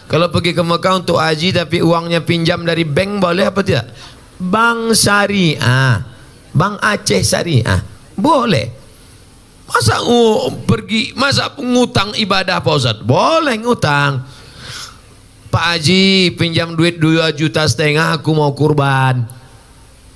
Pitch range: 135-185 Hz